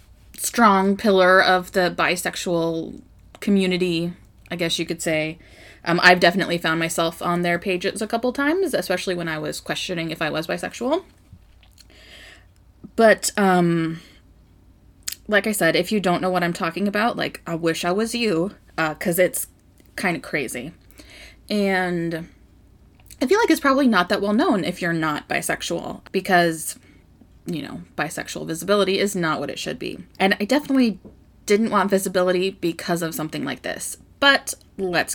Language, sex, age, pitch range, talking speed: English, female, 20-39, 165-205 Hz, 160 wpm